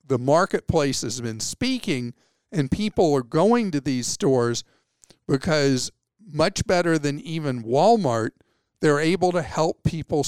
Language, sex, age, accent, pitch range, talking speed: English, male, 50-69, American, 130-170 Hz, 135 wpm